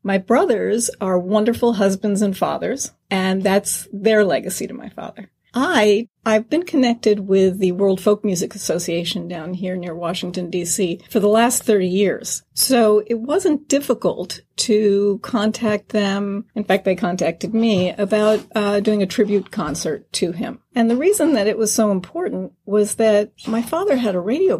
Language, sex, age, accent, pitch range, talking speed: English, female, 40-59, American, 190-230 Hz, 170 wpm